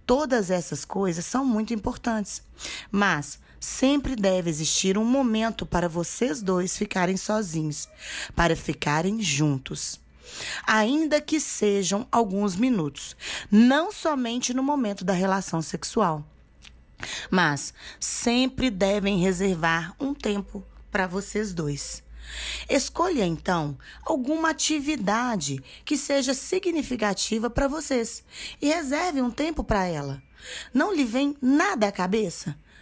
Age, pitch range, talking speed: 20-39, 175-260 Hz, 115 wpm